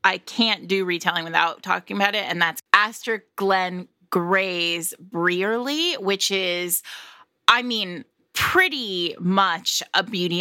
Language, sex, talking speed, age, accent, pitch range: English, female, 125 wpm, 20-39, American, 170-210 Hz